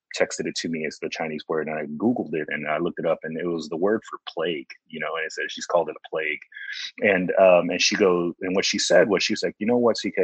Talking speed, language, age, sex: 295 wpm, English, 30-49, male